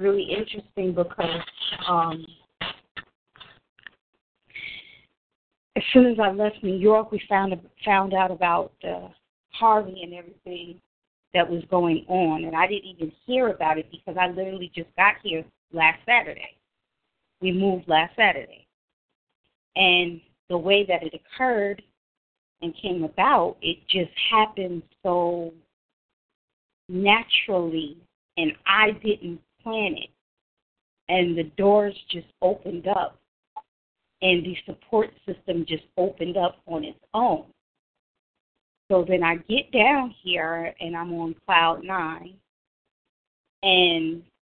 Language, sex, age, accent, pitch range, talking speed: English, female, 30-49, American, 165-195 Hz, 120 wpm